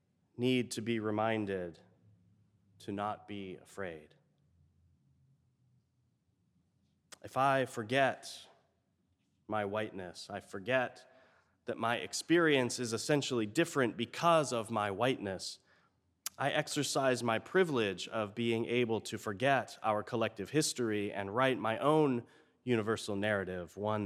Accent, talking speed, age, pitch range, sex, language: American, 110 wpm, 30-49, 100-125 Hz, male, English